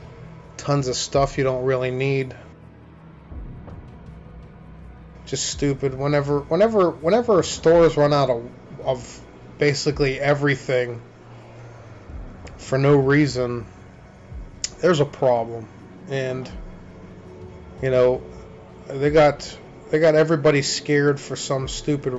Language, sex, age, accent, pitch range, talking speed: English, male, 30-49, American, 120-145 Hz, 100 wpm